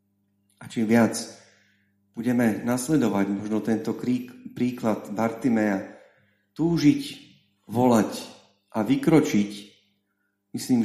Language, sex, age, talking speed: Slovak, male, 40-59, 85 wpm